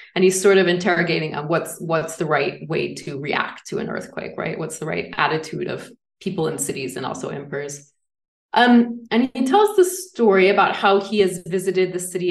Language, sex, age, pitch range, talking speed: English, female, 20-39, 170-220 Hz, 200 wpm